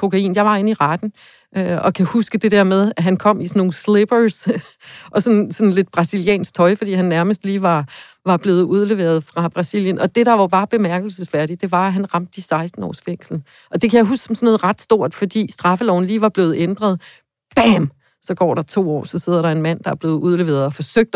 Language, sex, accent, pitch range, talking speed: Danish, female, native, 170-200 Hz, 230 wpm